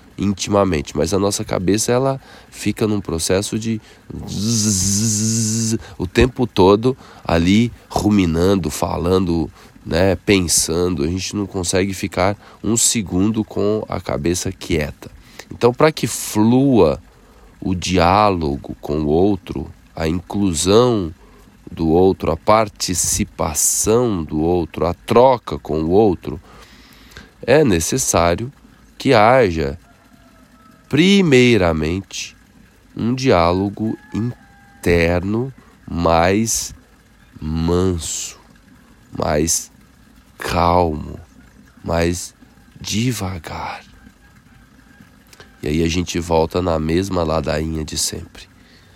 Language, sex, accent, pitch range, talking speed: Portuguese, male, Brazilian, 85-105 Hz, 90 wpm